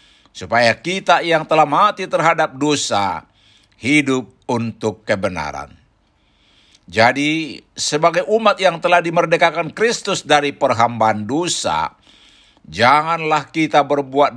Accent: native